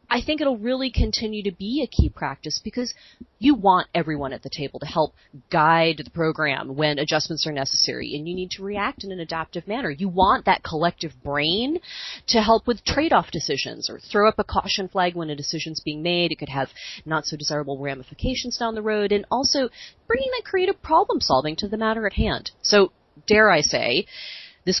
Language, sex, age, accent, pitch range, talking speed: English, female, 30-49, American, 155-220 Hz, 205 wpm